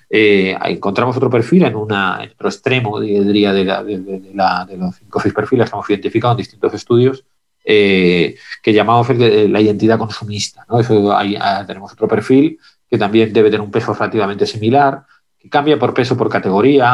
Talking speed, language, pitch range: 155 wpm, Spanish, 105-120 Hz